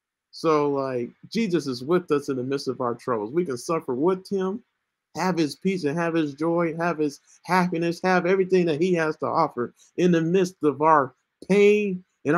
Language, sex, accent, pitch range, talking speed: English, male, American, 160-195 Hz, 200 wpm